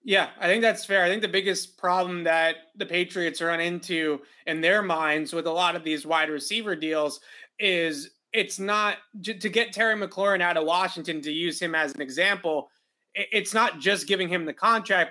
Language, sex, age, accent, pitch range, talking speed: English, male, 30-49, American, 165-195 Hz, 195 wpm